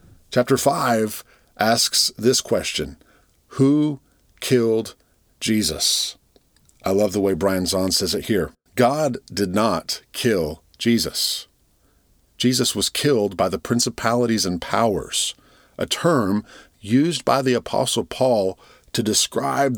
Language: English